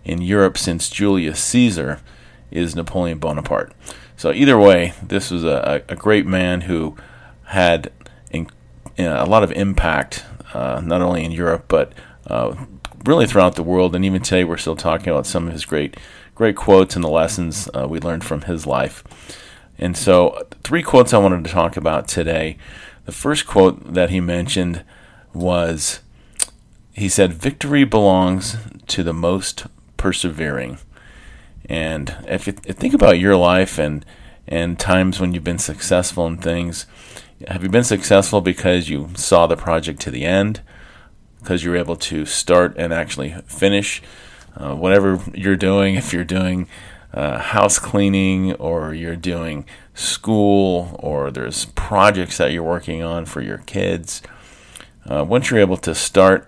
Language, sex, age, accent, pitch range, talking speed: English, male, 40-59, American, 80-95 Hz, 155 wpm